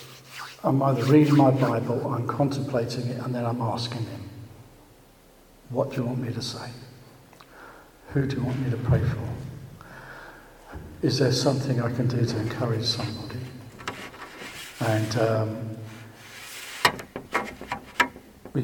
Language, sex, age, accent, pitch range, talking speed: English, male, 60-79, British, 120-140 Hz, 130 wpm